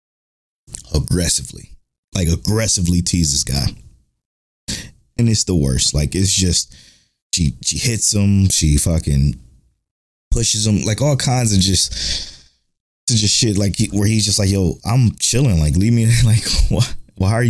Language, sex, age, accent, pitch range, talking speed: English, male, 20-39, American, 85-110 Hz, 150 wpm